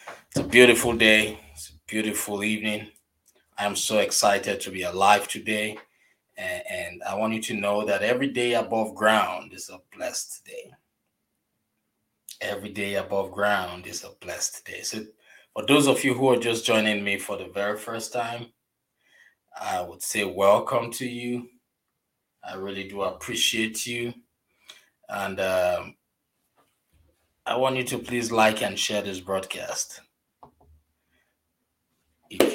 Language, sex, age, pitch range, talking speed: English, male, 20-39, 100-120 Hz, 145 wpm